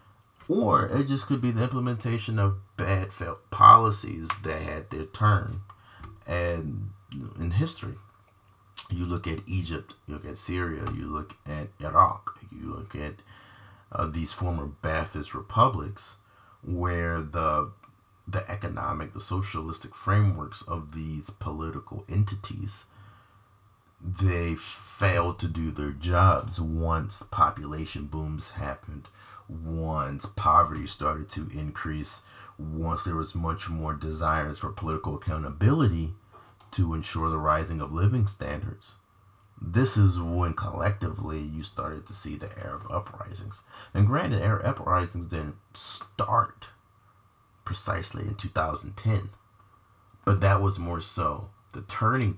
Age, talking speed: 30-49, 120 wpm